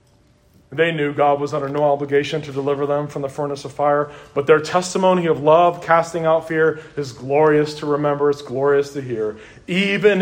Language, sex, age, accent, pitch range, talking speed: English, male, 40-59, American, 155-220 Hz, 190 wpm